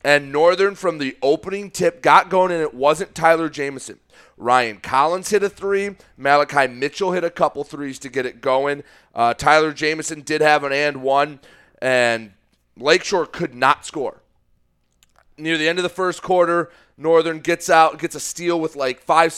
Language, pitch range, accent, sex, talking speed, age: English, 120-160 Hz, American, male, 175 wpm, 30-49